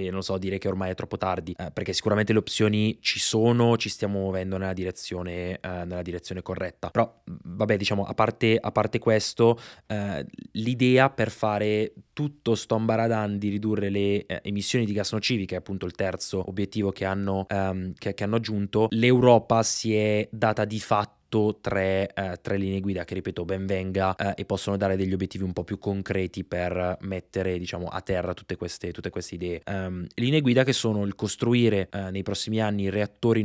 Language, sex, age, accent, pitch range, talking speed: Italian, male, 20-39, native, 95-110 Hz, 190 wpm